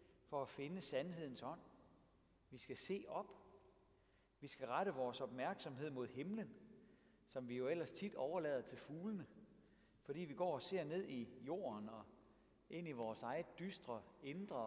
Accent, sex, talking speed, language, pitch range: native, male, 160 wpm, Danish, 115-180 Hz